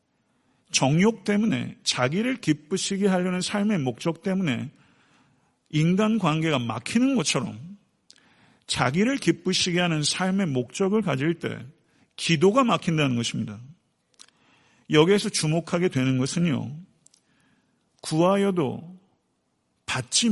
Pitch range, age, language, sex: 135-185 Hz, 50-69, Korean, male